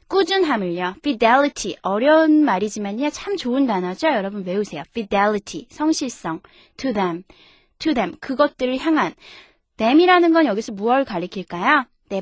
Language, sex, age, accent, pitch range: Korean, female, 20-39, native, 210-315 Hz